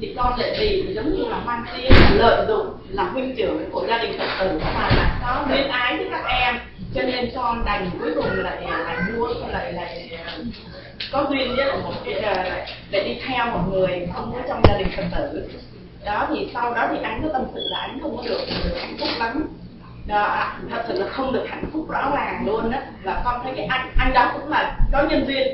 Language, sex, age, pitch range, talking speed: Vietnamese, female, 20-39, 205-285 Hz, 230 wpm